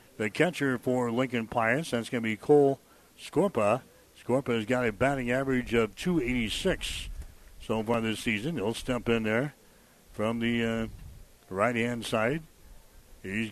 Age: 60-79